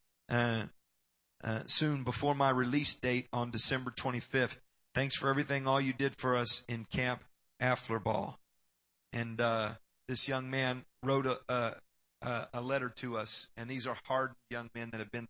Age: 40-59